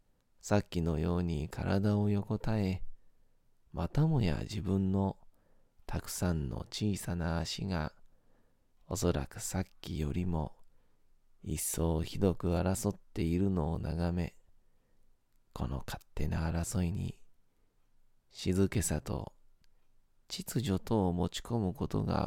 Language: Japanese